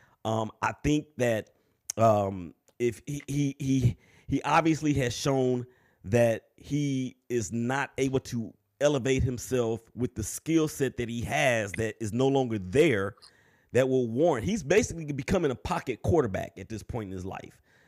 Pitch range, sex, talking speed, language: 110-140 Hz, male, 160 wpm, English